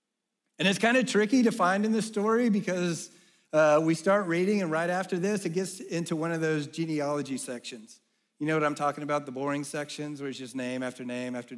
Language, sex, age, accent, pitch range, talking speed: English, male, 40-59, American, 145-220 Hz, 225 wpm